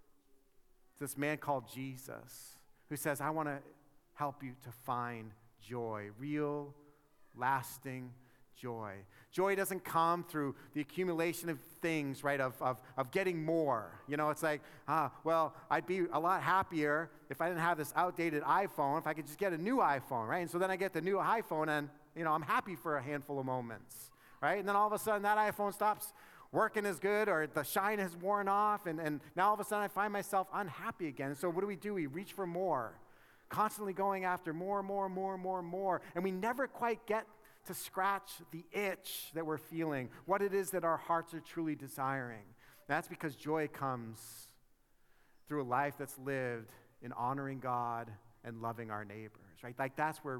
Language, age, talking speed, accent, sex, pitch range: English, 40-59, 200 wpm, American, male, 135-185 Hz